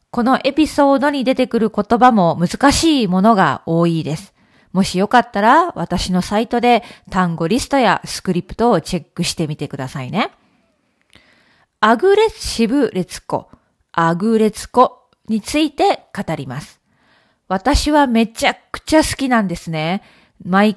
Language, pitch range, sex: Japanese, 180-265 Hz, female